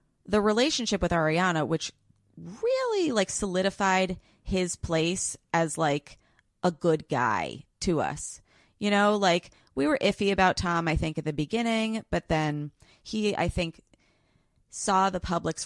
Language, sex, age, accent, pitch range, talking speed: English, female, 30-49, American, 145-190 Hz, 145 wpm